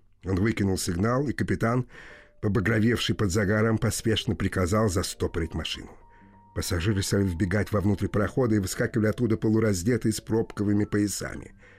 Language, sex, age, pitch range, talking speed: Russian, male, 50-69, 95-115 Hz, 120 wpm